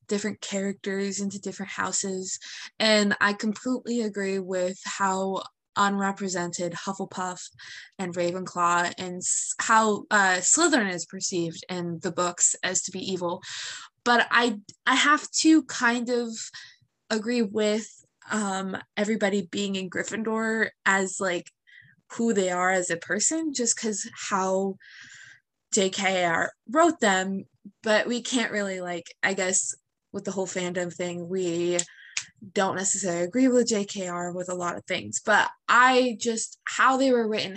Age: 20-39